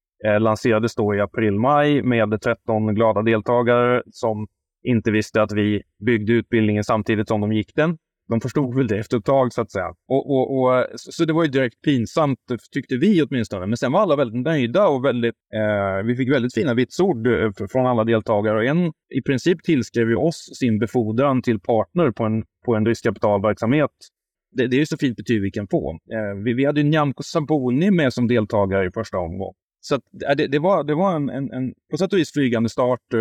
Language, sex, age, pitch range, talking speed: Swedish, male, 20-39, 110-130 Hz, 210 wpm